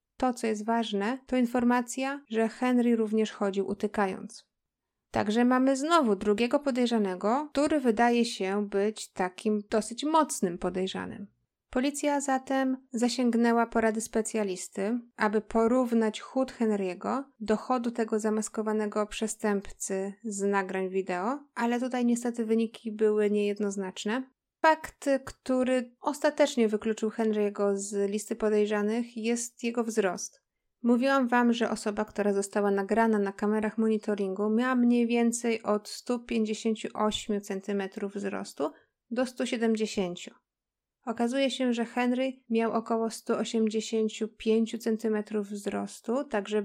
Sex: female